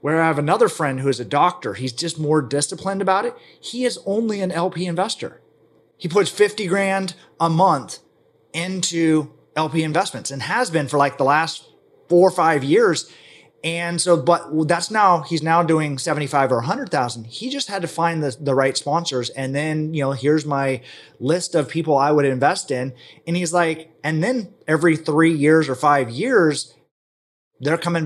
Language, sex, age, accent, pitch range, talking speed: English, male, 30-49, American, 135-170 Hz, 190 wpm